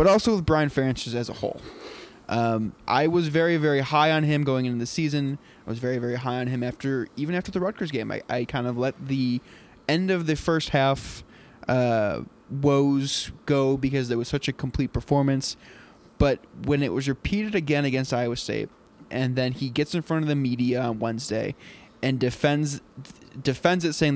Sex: male